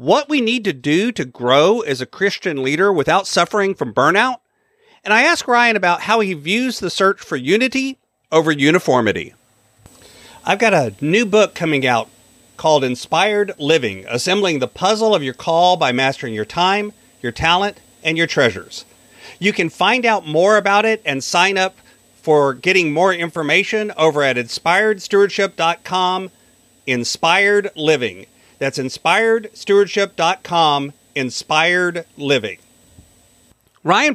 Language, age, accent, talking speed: English, 40-59, American, 135 wpm